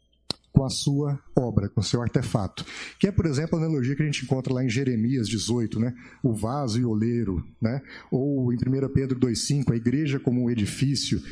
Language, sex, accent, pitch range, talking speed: Portuguese, male, Brazilian, 115-145 Hz, 205 wpm